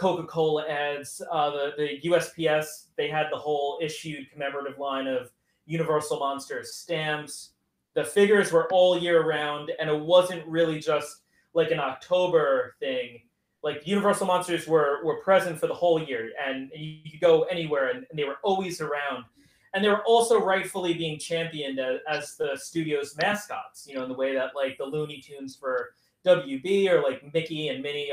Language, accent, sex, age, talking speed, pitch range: English, American, male, 30-49, 175 wpm, 140-175 Hz